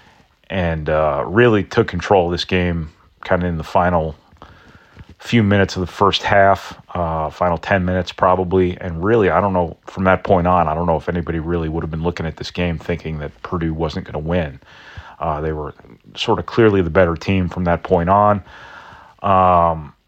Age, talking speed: 30-49, 195 wpm